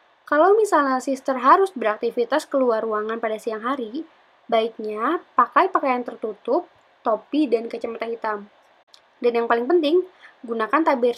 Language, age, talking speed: Indonesian, 20-39, 130 wpm